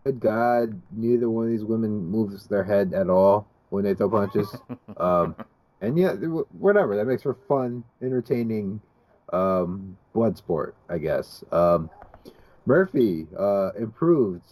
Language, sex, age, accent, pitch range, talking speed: English, male, 30-49, American, 95-125 Hz, 140 wpm